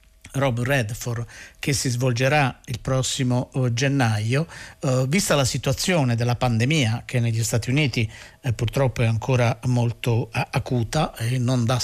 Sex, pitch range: male, 120-145 Hz